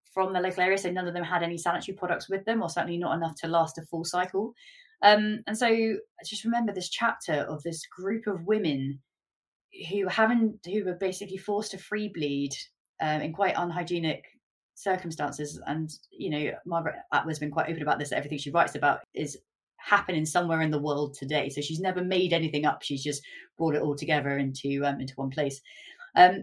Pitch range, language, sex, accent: 145-190 Hz, English, female, British